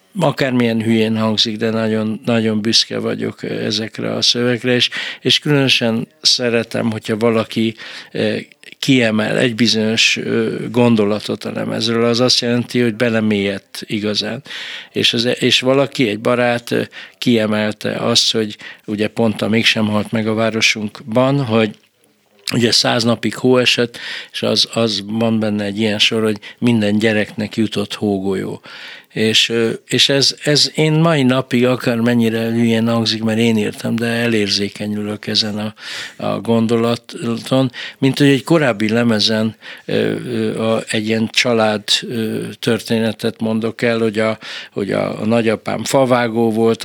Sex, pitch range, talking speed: male, 110-120 Hz, 130 wpm